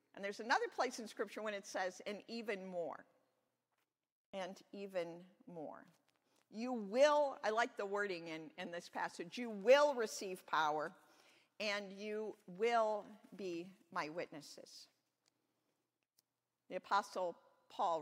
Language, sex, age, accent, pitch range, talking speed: English, female, 50-69, American, 185-245 Hz, 125 wpm